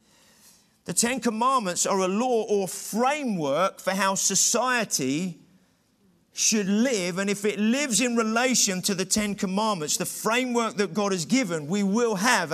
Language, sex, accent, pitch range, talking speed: English, male, British, 175-215 Hz, 155 wpm